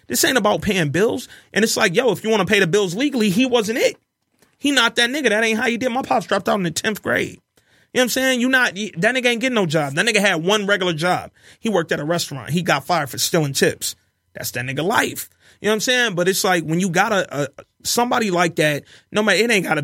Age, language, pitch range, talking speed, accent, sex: 30-49, English, 150-210 Hz, 280 wpm, American, male